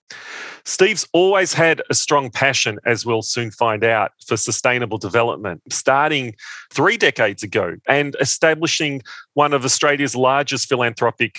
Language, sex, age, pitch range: English, male, 40-59, 115-145 Hz